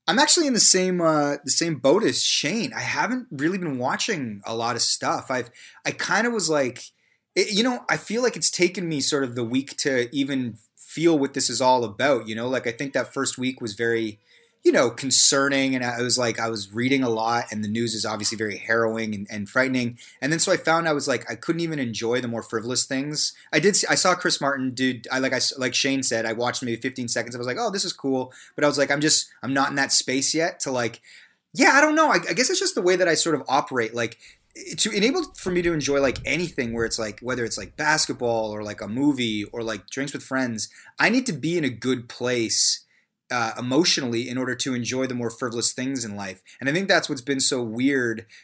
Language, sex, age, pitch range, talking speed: English, male, 30-49, 120-155 Hz, 255 wpm